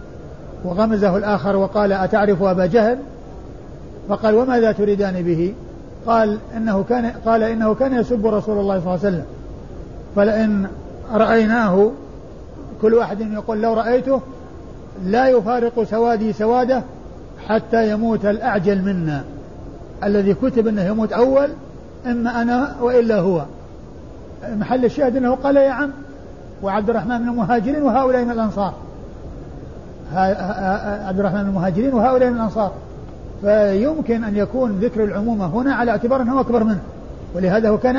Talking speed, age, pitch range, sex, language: 120 wpm, 50-69, 195-235 Hz, male, Arabic